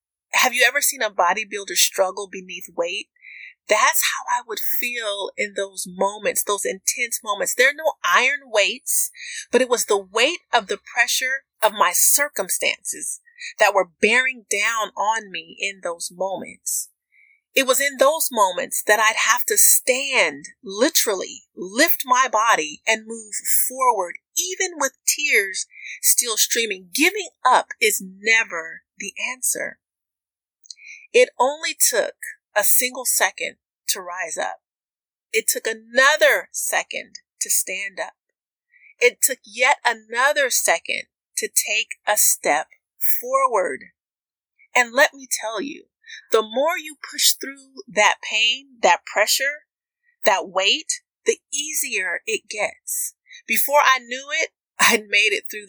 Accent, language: American, English